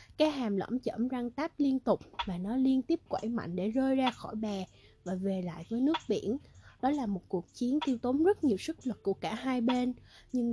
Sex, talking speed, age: female, 235 wpm, 20-39